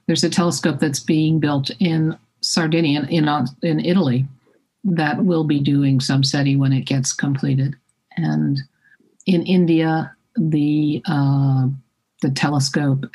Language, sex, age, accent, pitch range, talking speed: English, male, 50-69, American, 135-175 Hz, 130 wpm